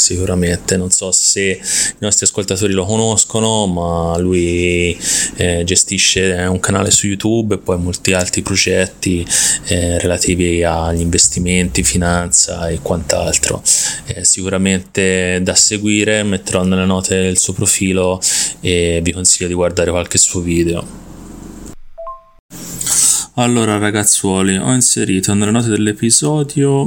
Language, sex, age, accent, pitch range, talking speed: Italian, male, 20-39, native, 90-105 Hz, 120 wpm